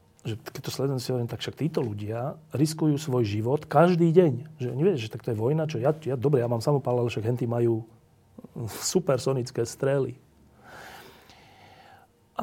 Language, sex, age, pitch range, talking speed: Slovak, male, 40-59, 120-150 Hz, 145 wpm